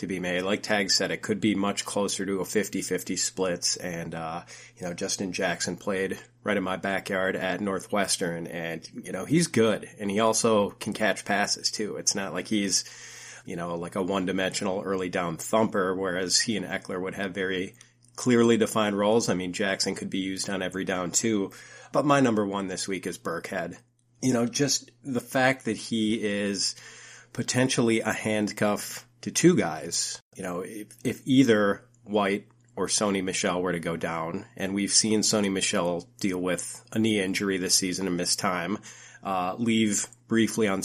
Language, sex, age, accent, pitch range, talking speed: English, male, 30-49, American, 95-115 Hz, 185 wpm